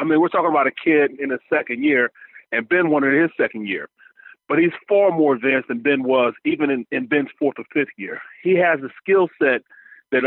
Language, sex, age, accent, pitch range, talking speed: English, male, 40-59, American, 140-190 Hz, 240 wpm